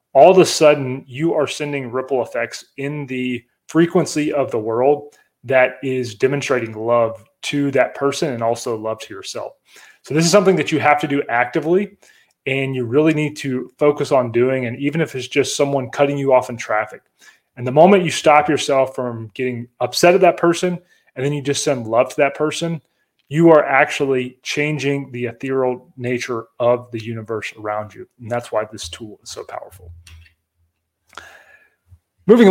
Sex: male